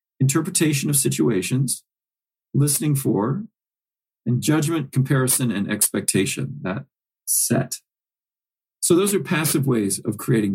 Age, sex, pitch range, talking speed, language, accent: 40-59, male, 105-140 Hz, 110 wpm, English, American